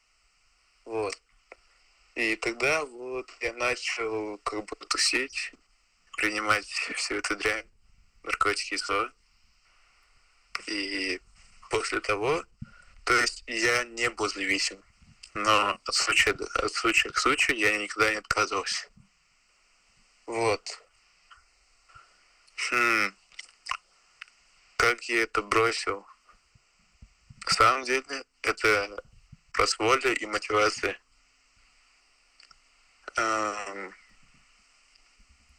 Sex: male